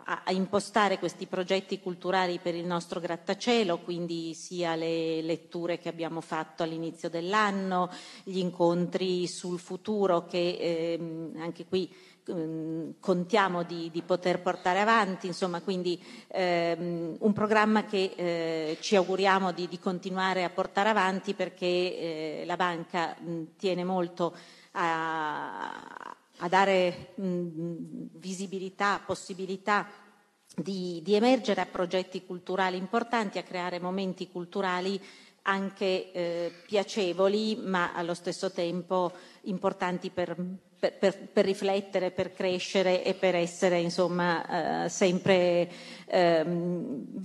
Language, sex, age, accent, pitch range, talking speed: Italian, female, 40-59, native, 170-195 Hz, 115 wpm